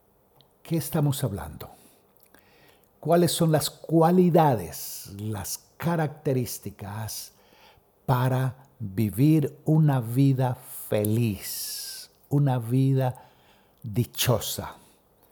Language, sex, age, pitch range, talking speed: Spanish, male, 60-79, 110-150 Hz, 65 wpm